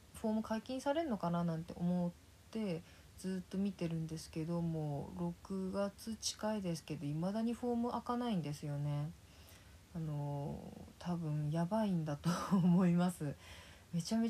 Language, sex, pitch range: Japanese, female, 155-190 Hz